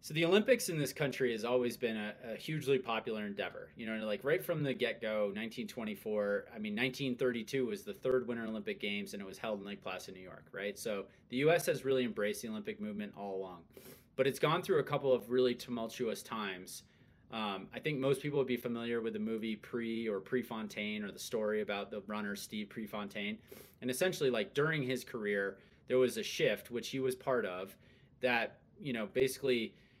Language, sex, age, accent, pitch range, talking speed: English, male, 30-49, American, 110-140 Hz, 205 wpm